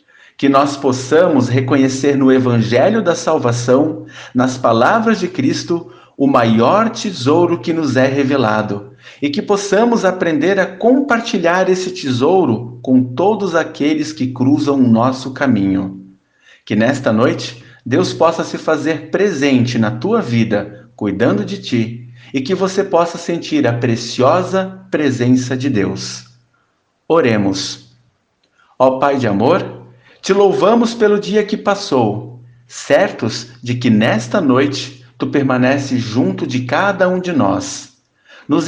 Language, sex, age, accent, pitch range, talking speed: Portuguese, male, 50-69, Brazilian, 120-170 Hz, 130 wpm